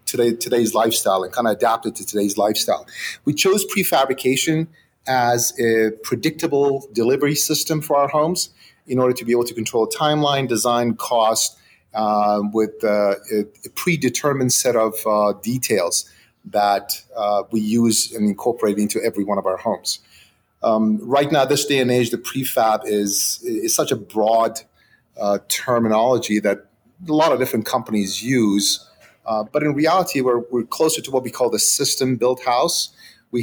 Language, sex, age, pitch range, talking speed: English, male, 30-49, 105-130 Hz, 165 wpm